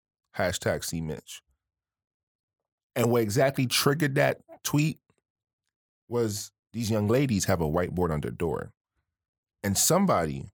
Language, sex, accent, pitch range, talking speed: English, male, American, 95-135 Hz, 120 wpm